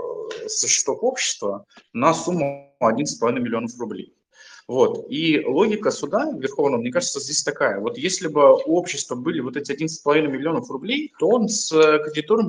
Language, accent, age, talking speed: Russian, native, 20-39, 155 wpm